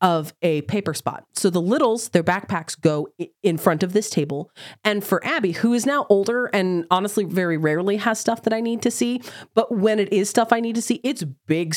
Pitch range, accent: 165-230 Hz, American